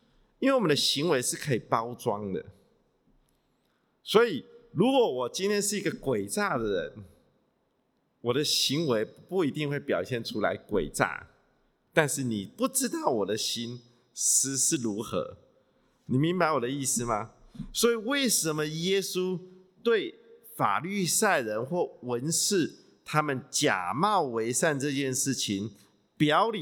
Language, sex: English, male